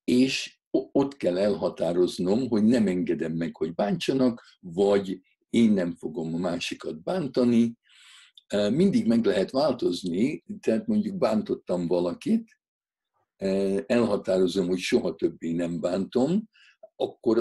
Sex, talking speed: male, 110 wpm